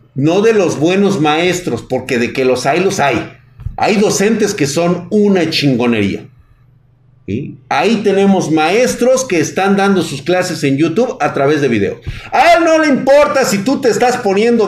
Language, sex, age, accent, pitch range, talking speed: Spanish, male, 50-69, Mexican, 130-200 Hz, 175 wpm